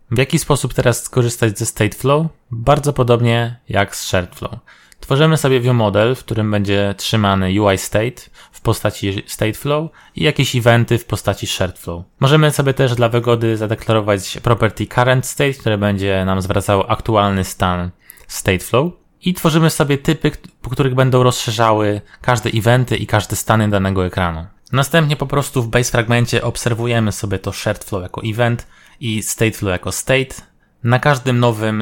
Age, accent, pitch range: 20-39, native, 100-125 Hz